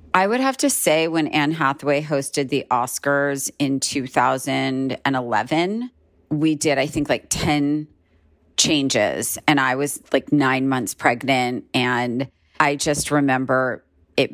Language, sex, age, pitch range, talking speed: English, female, 40-59, 125-150 Hz, 135 wpm